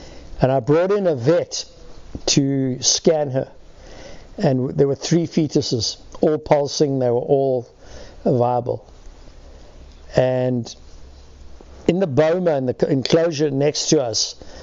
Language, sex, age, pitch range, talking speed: English, male, 60-79, 125-155 Hz, 125 wpm